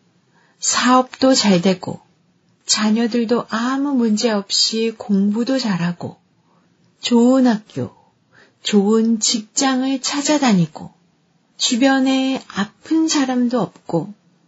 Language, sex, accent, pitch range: Korean, female, native, 185-265 Hz